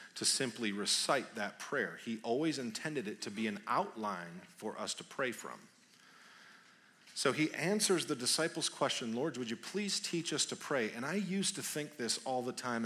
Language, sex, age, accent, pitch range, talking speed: English, male, 40-59, American, 130-180 Hz, 190 wpm